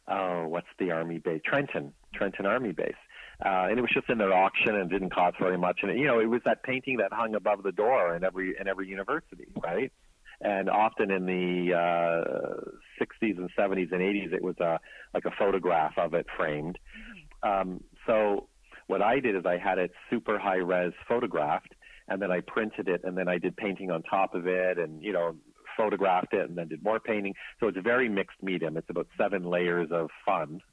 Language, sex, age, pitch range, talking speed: English, male, 40-59, 90-100 Hz, 210 wpm